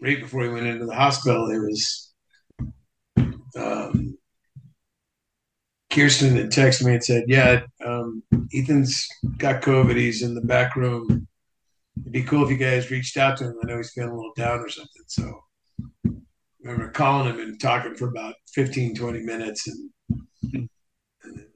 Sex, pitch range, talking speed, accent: male, 120-140 Hz, 165 wpm, American